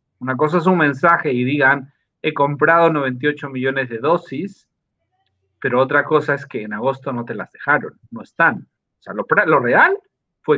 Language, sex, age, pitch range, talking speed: Spanish, male, 40-59, 115-150 Hz, 180 wpm